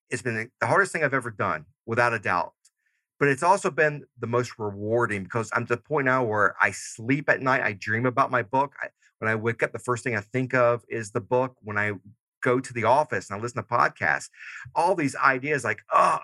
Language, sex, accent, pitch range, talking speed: English, male, American, 110-140 Hz, 235 wpm